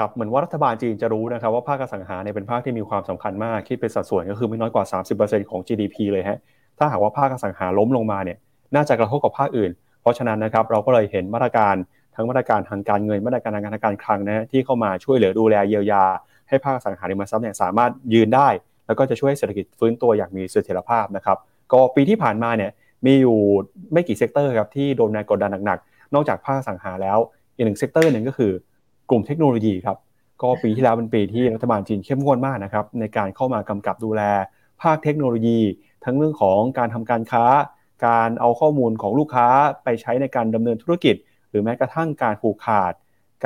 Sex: male